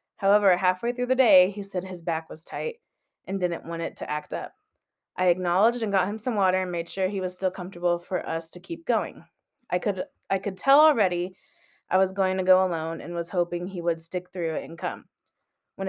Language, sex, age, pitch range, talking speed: English, female, 20-39, 175-205 Hz, 225 wpm